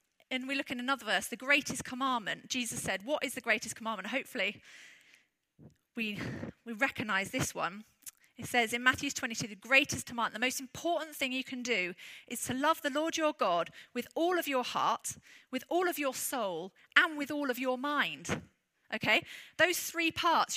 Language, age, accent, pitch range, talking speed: English, 40-59, British, 235-290 Hz, 185 wpm